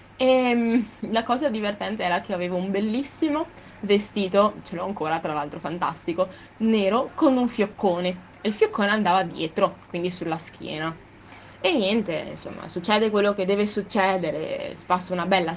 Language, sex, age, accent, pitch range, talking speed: Italian, female, 20-39, native, 180-270 Hz, 150 wpm